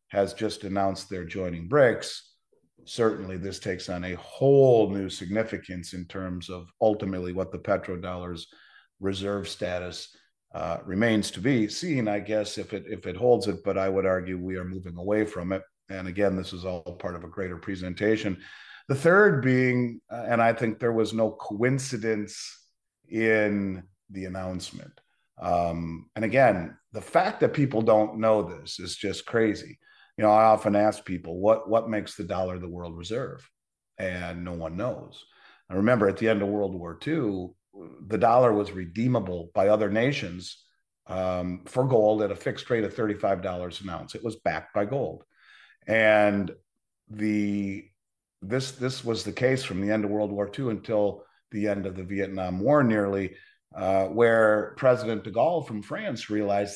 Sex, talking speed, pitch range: male, 170 wpm, 95-110 Hz